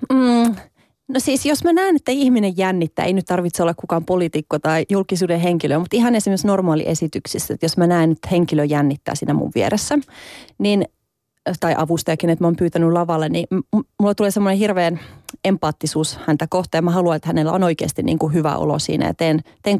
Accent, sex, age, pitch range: native, female, 30-49, 155-190 Hz